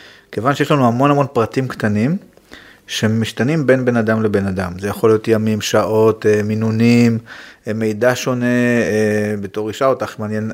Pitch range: 110-135 Hz